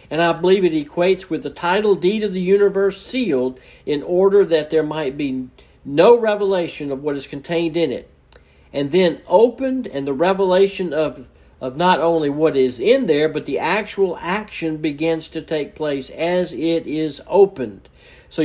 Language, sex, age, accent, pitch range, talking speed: English, male, 60-79, American, 140-190 Hz, 175 wpm